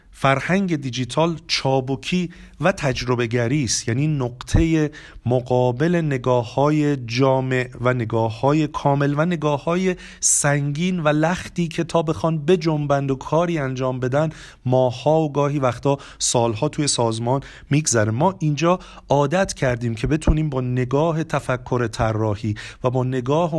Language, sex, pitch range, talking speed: Persian, male, 125-155 Hz, 130 wpm